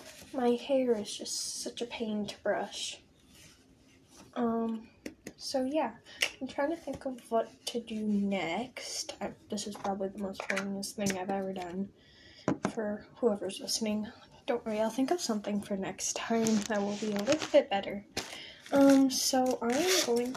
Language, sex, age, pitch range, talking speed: English, female, 10-29, 220-295 Hz, 165 wpm